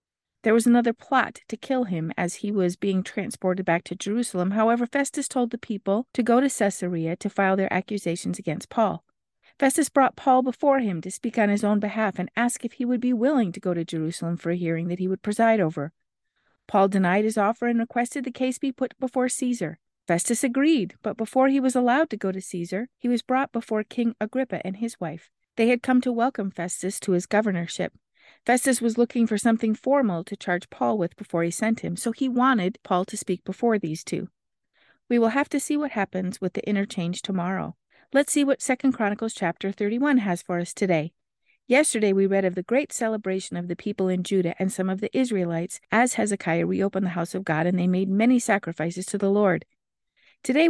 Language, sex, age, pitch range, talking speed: English, female, 50-69, 185-245 Hz, 210 wpm